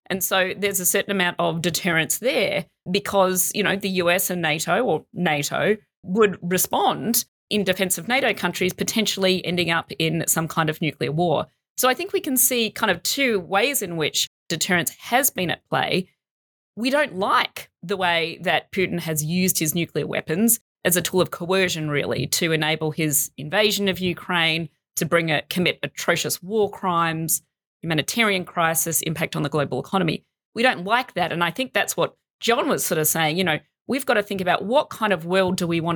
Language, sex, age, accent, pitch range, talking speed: English, female, 30-49, Australian, 170-210 Hz, 195 wpm